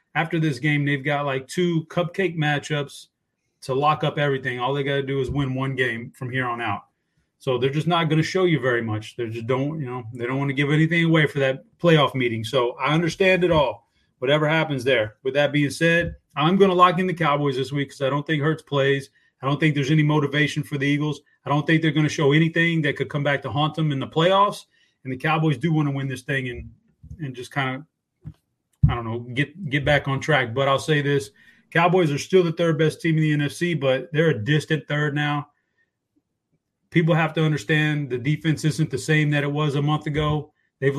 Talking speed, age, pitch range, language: 240 wpm, 30-49, 140-160 Hz, English